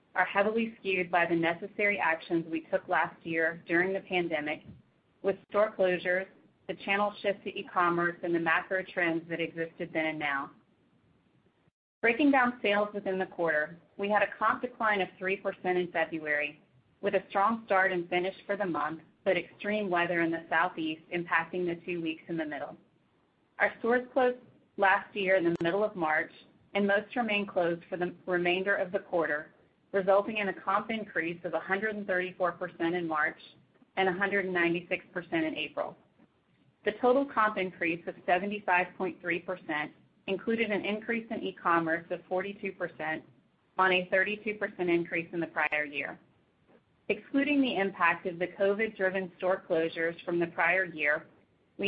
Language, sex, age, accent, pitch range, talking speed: English, female, 30-49, American, 170-200 Hz, 155 wpm